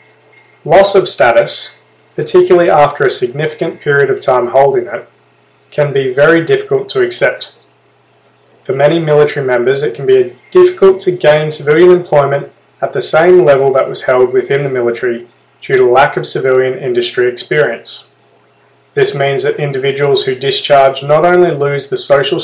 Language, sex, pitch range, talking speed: English, male, 135-200 Hz, 155 wpm